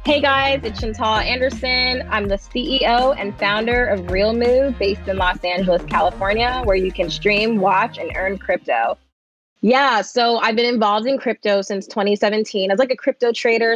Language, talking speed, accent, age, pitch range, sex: English, 175 wpm, American, 20-39, 180-220 Hz, female